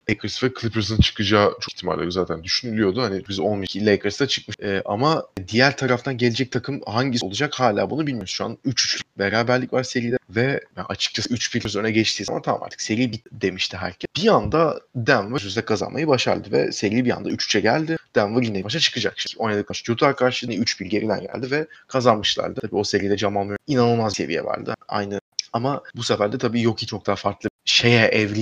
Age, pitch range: 30-49, 100-120 Hz